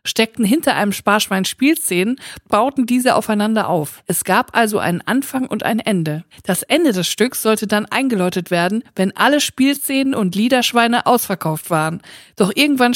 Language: German